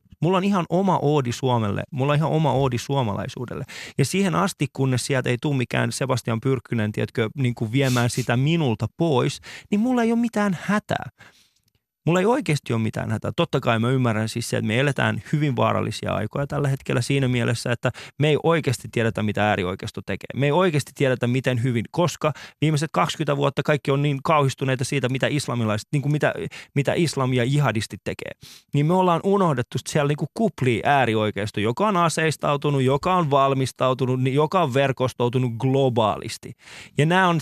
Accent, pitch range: native, 120-160 Hz